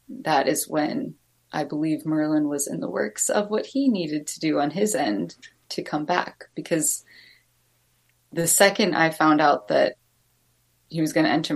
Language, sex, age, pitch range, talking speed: English, female, 20-39, 150-185 Hz, 175 wpm